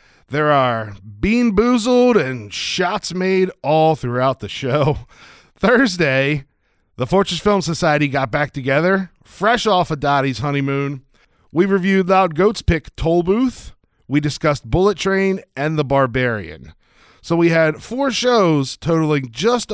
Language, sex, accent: English, male, American